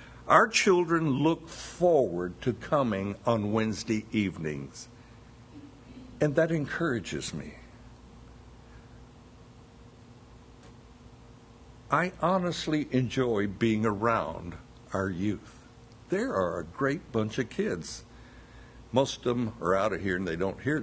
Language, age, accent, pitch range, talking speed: English, 60-79, American, 115-160 Hz, 110 wpm